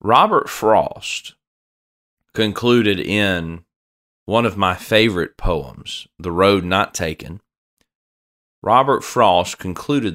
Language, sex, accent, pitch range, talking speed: English, male, American, 80-115 Hz, 95 wpm